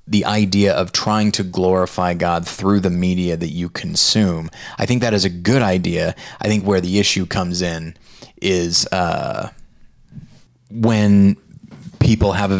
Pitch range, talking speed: 95-115 Hz, 155 wpm